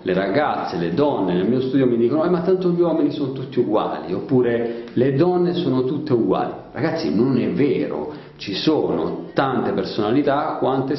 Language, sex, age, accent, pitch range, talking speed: Italian, male, 40-59, native, 105-135 Hz, 175 wpm